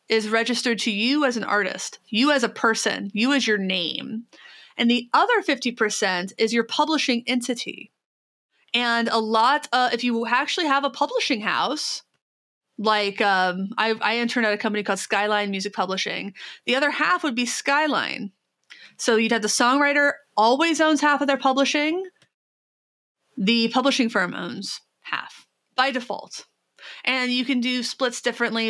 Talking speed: 160 wpm